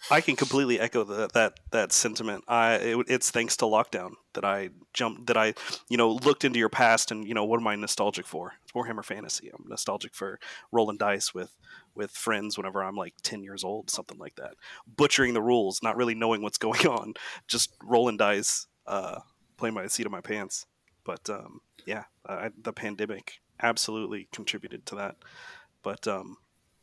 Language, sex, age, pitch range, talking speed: English, male, 30-49, 105-120 Hz, 190 wpm